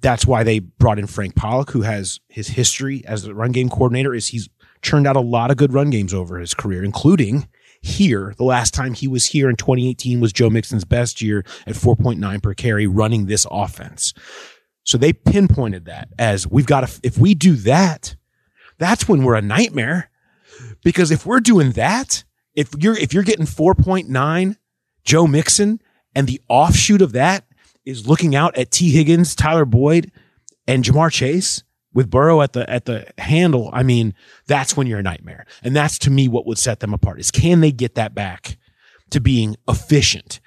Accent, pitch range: American, 110-140 Hz